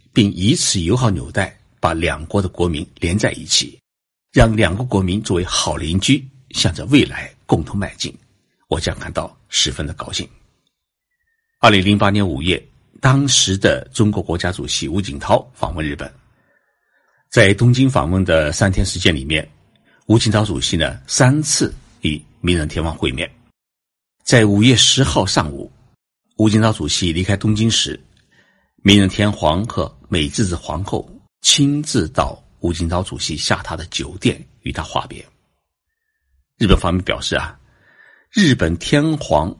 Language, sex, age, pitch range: Chinese, male, 60-79, 85-120 Hz